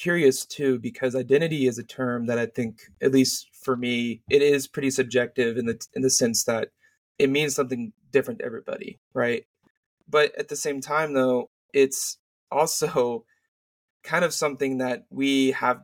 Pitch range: 125-140 Hz